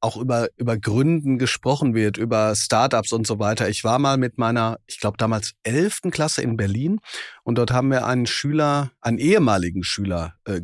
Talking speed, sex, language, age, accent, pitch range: 185 wpm, male, German, 40-59, German, 110-145 Hz